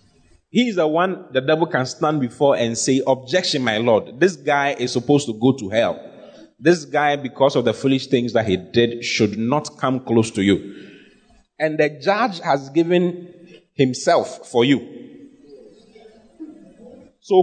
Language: English